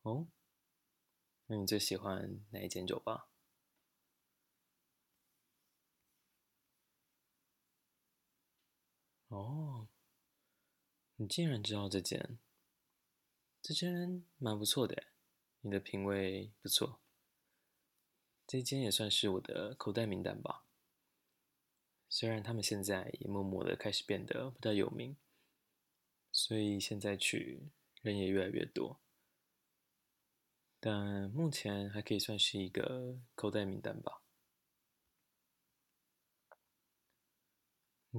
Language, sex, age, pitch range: Chinese, male, 20-39, 100-120 Hz